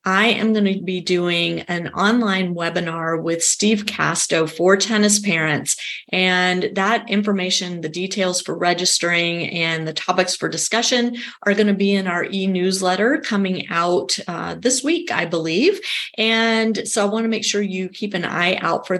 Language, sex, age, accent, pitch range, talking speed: English, female, 30-49, American, 170-205 Hz, 170 wpm